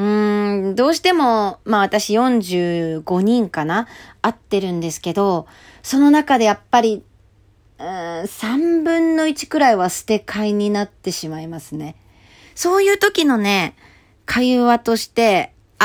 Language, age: Japanese, 40-59